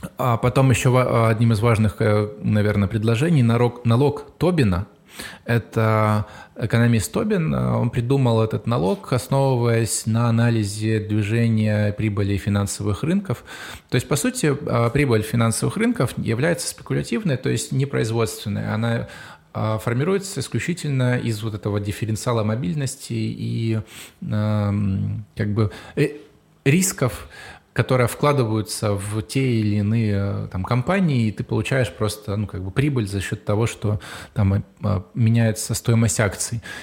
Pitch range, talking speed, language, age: 105-130 Hz, 115 wpm, Russian, 20-39